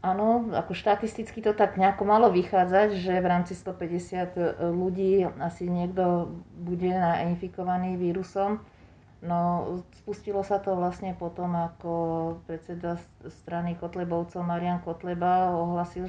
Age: 40-59